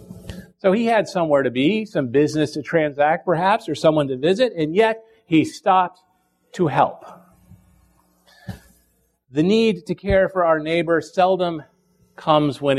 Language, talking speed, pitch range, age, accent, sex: English, 145 wpm, 120-185 Hz, 40-59, American, male